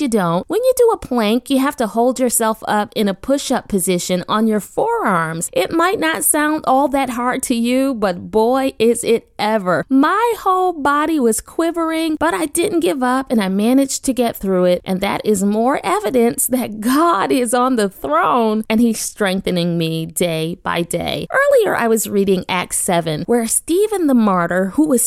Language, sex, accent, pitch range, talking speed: English, female, American, 220-295 Hz, 195 wpm